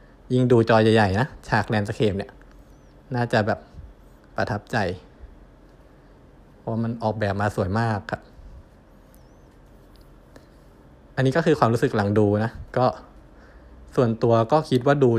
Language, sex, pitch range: Thai, male, 105-125 Hz